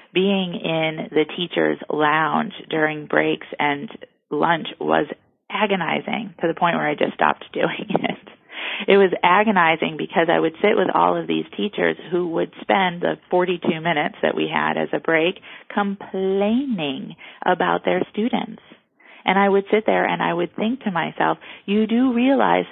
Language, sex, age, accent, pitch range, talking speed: English, female, 30-49, American, 150-195 Hz, 165 wpm